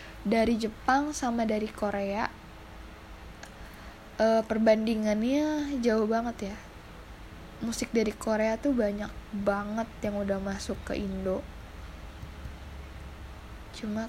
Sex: female